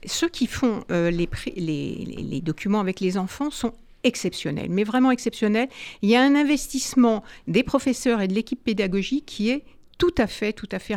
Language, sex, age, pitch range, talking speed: French, female, 60-79, 215-265 Hz, 195 wpm